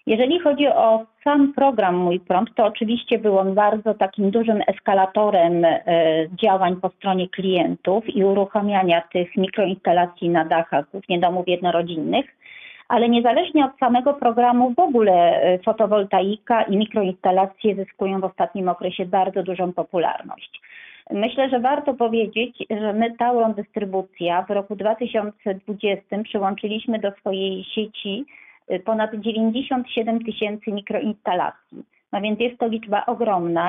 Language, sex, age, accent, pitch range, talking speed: Polish, female, 40-59, native, 190-230 Hz, 125 wpm